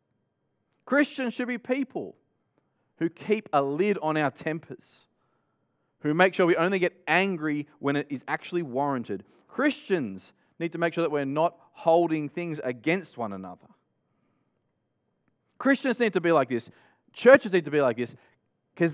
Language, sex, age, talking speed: English, male, 30-49, 155 wpm